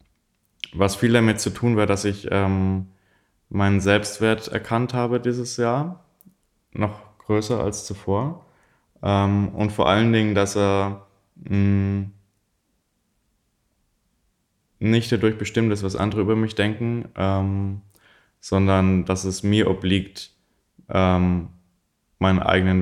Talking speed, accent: 120 wpm, German